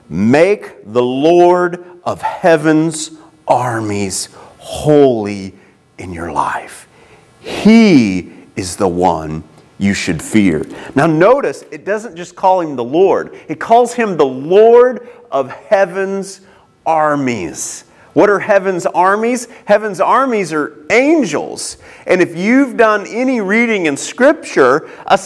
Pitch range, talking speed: 165-250 Hz, 120 wpm